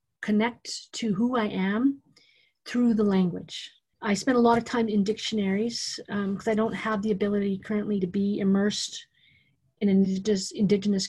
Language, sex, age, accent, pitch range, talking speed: English, female, 40-59, American, 195-240 Hz, 155 wpm